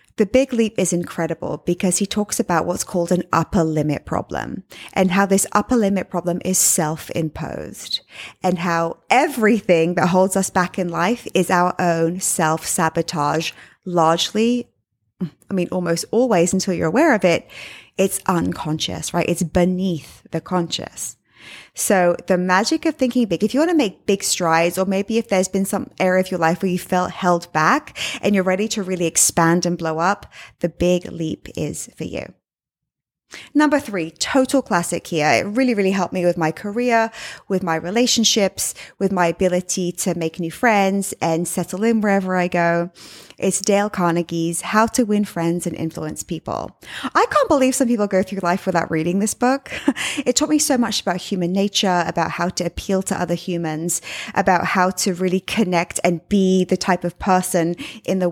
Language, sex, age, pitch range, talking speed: English, female, 20-39, 170-210 Hz, 180 wpm